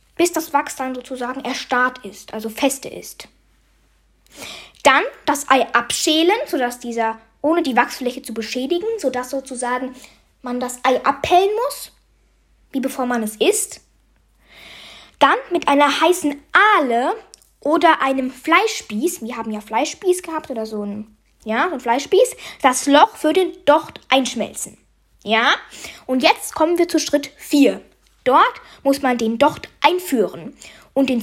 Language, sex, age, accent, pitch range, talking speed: German, female, 20-39, German, 255-360 Hz, 145 wpm